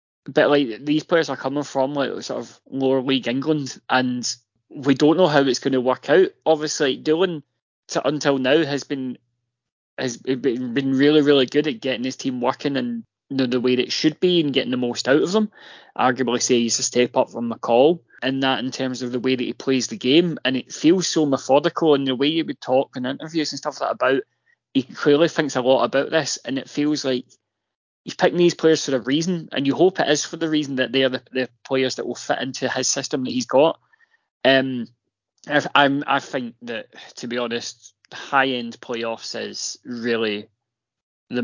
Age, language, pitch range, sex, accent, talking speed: 20-39, English, 120-150 Hz, male, British, 220 wpm